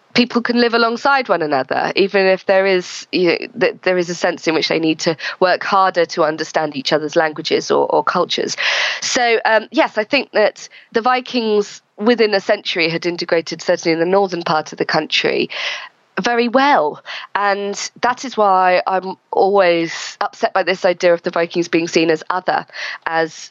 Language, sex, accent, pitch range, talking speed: English, female, British, 170-220 Hz, 185 wpm